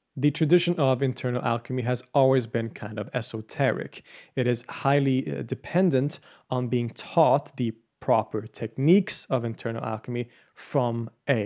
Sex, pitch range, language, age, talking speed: male, 115-140 Hz, English, 30-49, 135 wpm